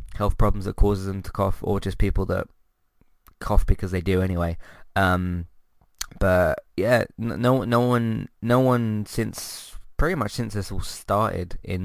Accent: British